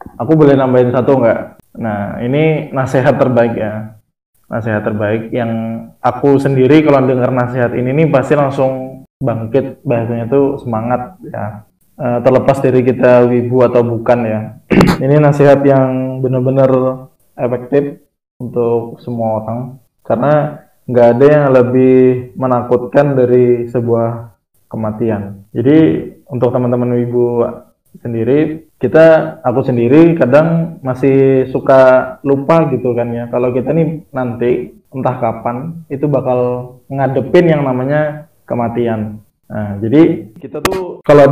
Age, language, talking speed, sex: 20-39, Indonesian, 120 wpm, male